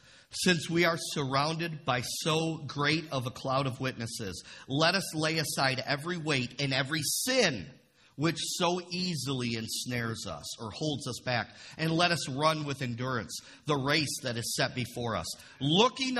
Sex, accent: male, American